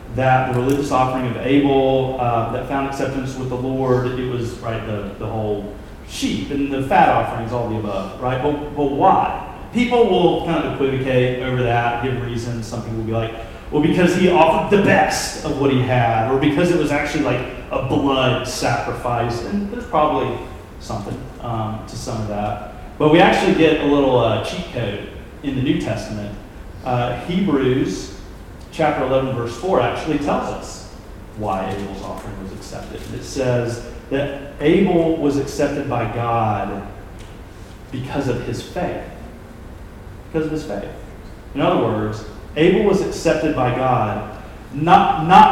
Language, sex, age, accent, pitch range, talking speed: English, male, 30-49, American, 110-155 Hz, 165 wpm